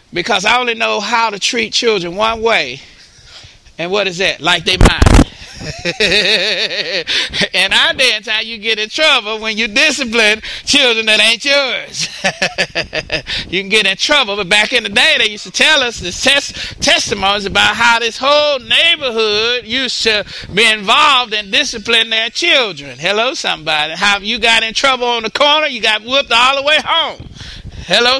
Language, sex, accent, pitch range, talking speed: English, male, American, 180-245 Hz, 170 wpm